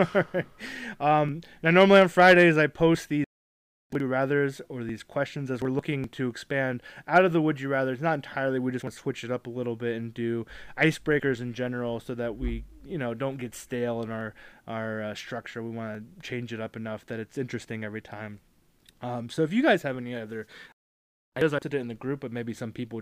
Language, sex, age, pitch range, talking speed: English, male, 20-39, 120-145 Hz, 225 wpm